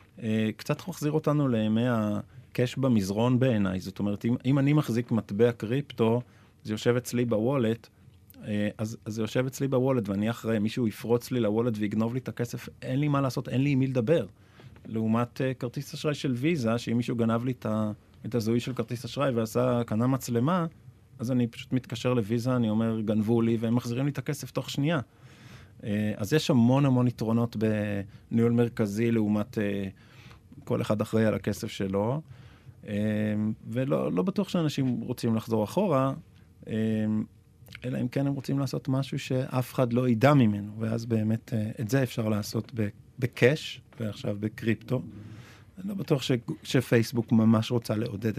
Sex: male